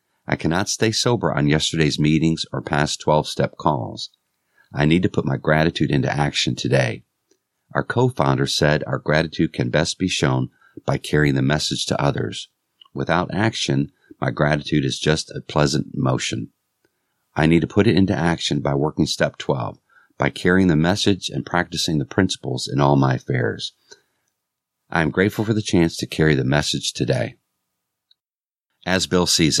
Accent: American